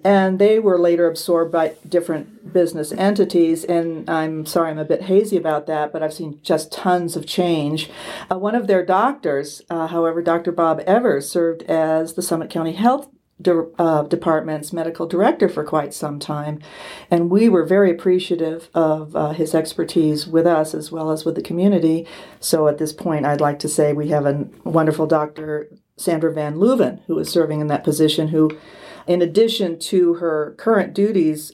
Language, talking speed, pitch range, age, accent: English, 180 wpm, 155-185 Hz, 50-69, American